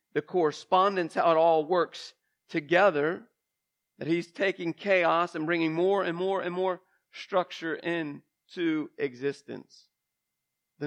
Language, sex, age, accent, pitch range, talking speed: English, male, 40-59, American, 165-200 Hz, 120 wpm